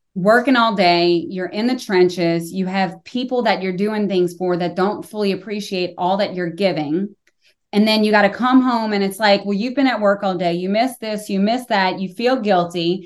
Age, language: 20-39, English